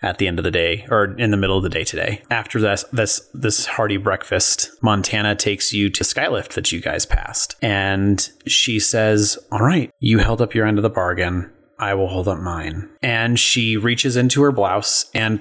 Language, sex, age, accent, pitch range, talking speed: English, male, 30-49, American, 95-115 Hz, 210 wpm